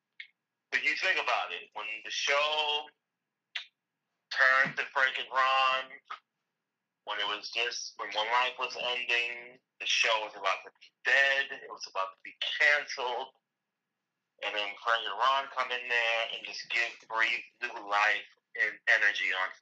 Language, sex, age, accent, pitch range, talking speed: English, male, 30-49, American, 110-135 Hz, 160 wpm